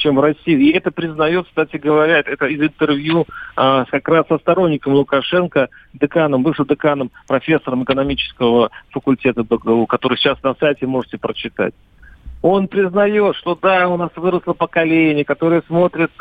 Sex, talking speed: male, 145 wpm